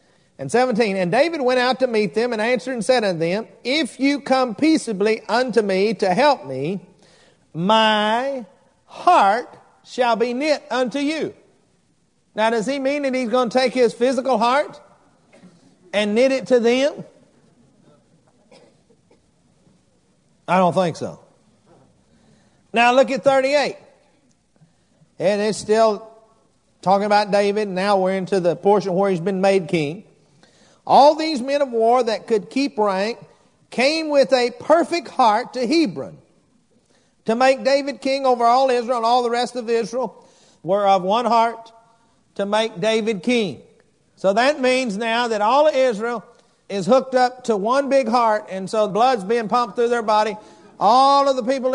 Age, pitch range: 50-69, 215-265 Hz